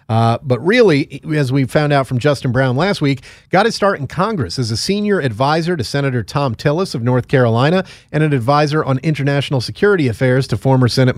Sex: male